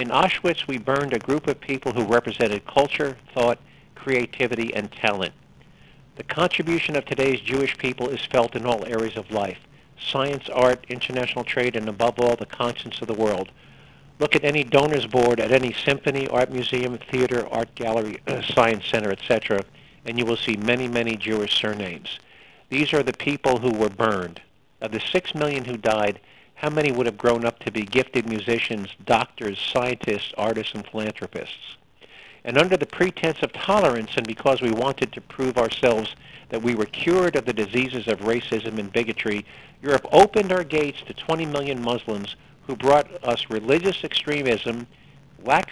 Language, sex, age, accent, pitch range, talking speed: English, male, 50-69, American, 115-140 Hz, 170 wpm